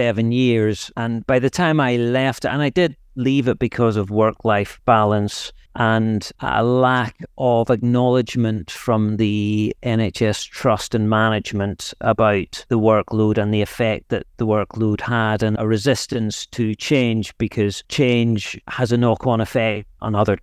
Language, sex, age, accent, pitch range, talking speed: English, male, 40-59, British, 110-130 Hz, 155 wpm